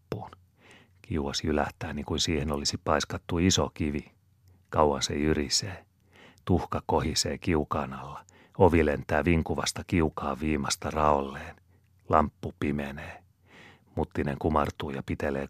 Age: 40-59